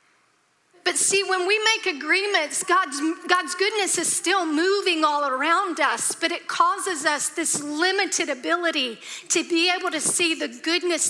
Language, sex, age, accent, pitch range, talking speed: English, female, 40-59, American, 310-365 Hz, 155 wpm